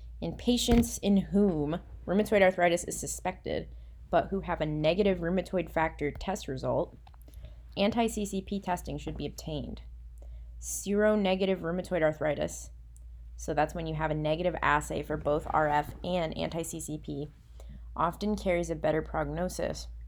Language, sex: English, female